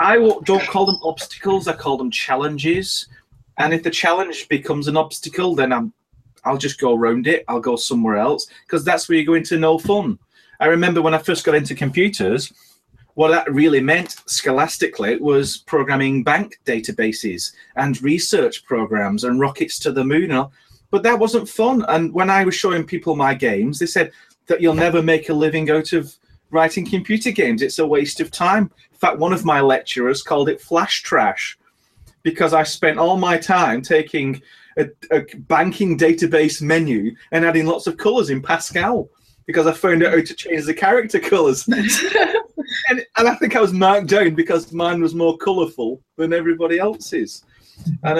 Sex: male